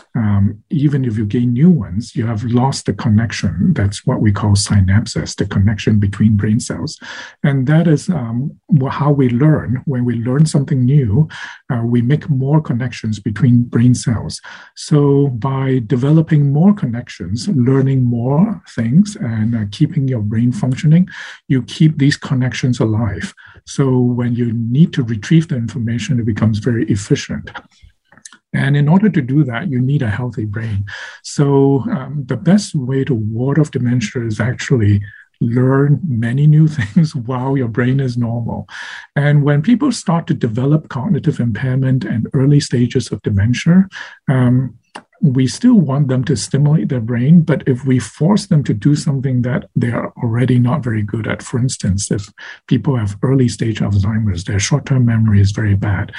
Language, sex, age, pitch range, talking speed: English, male, 50-69, 115-145 Hz, 165 wpm